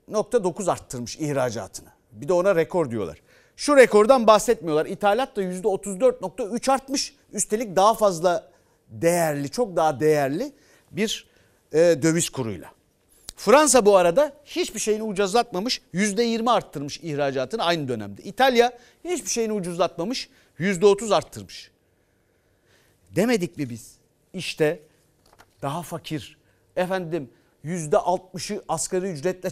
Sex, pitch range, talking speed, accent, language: male, 145-215 Hz, 115 wpm, native, Turkish